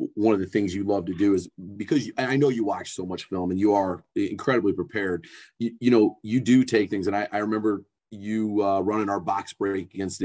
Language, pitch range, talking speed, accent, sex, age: English, 95-115 Hz, 240 wpm, American, male, 30-49